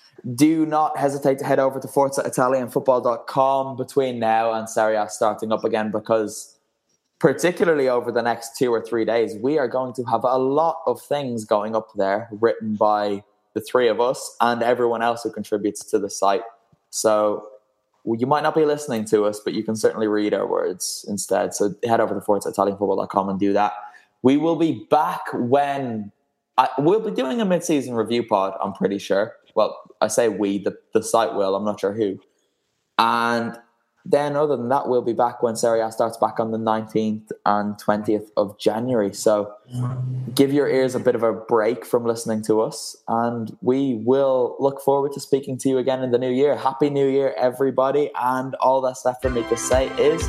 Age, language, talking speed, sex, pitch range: 20-39, English, 195 wpm, male, 110-135 Hz